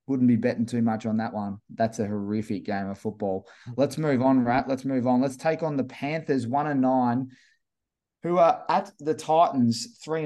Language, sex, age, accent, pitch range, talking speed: English, male, 20-39, Australian, 125-150 Hz, 200 wpm